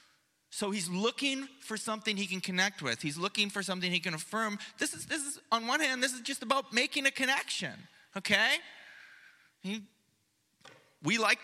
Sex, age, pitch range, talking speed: male, 20-39, 185-265 Hz, 175 wpm